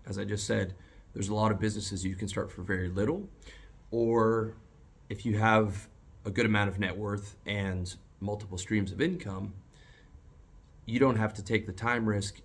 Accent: American